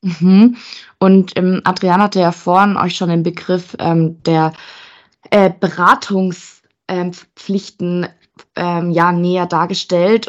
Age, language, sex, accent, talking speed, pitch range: 20-39, German, female, German, 110 wpm, 165-195 Hz